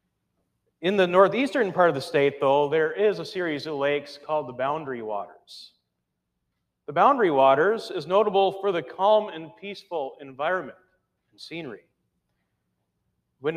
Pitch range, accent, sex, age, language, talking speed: 145-195 Hz, American, male, 40-59, English, 140 wpm